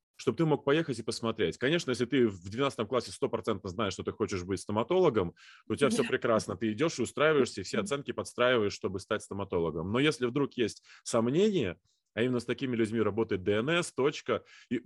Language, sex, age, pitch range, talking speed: Russian, male, 20-39, 110-135 Hz, 195 wpm